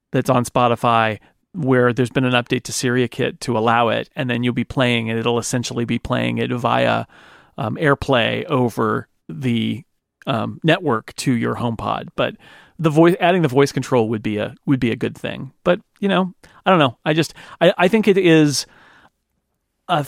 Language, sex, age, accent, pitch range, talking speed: English, male, 40-59, American, 120-150 Hz, 195 wpm